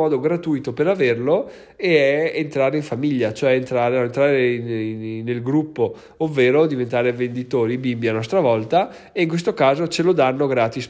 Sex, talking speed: male, 165 wpm